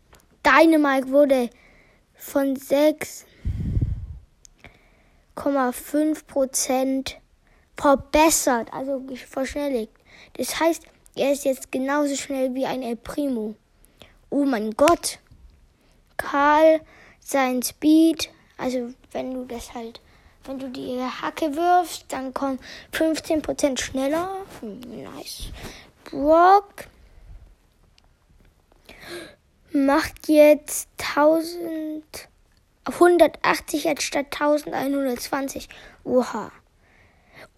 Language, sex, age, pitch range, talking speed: German, female, 20-39, 265-315 Hz, 75 wpm